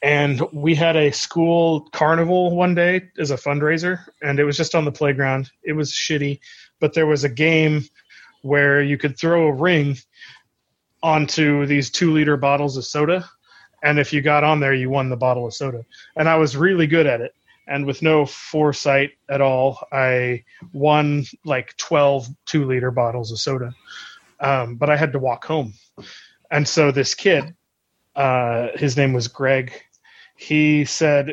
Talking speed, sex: 175 wpm, male